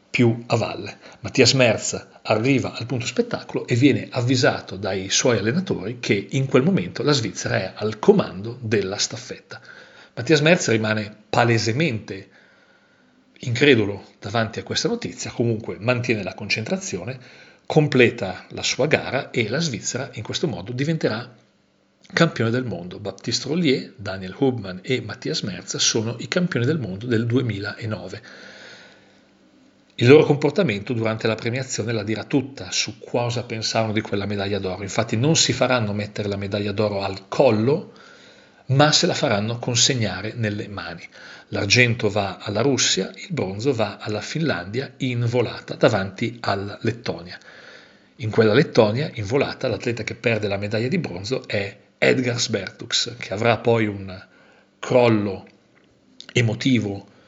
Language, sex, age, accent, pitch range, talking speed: Italian, male, 40-59, native, 105-125 Hz, 140 wpm